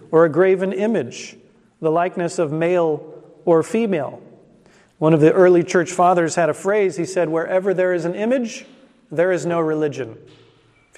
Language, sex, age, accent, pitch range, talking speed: English, male, 40-59, American, 160-195 Hz, 170 wpm